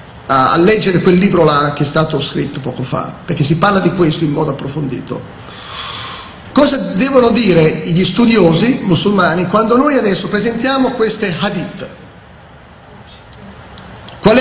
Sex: male